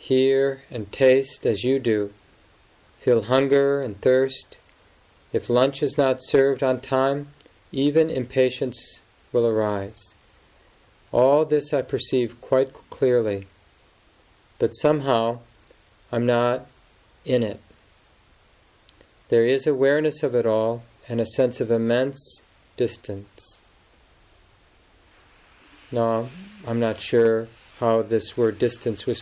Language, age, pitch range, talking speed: English, 40-59, 105-130 Hz, 110 wpm